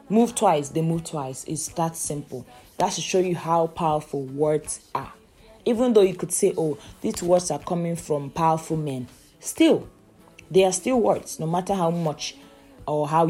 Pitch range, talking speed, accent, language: 145-175 Hz, 180 wpm, Nigerian, English